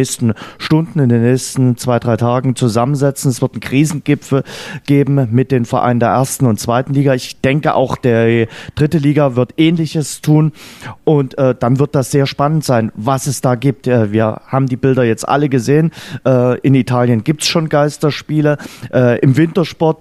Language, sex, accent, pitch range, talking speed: German, male, German, 125-150 Hz, 180 wpm